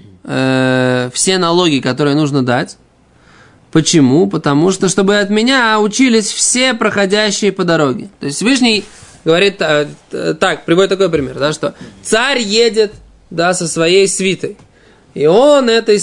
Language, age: Russian, 20-39